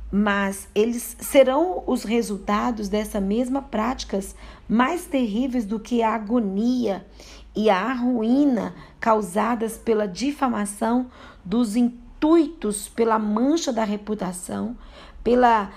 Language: Portuguese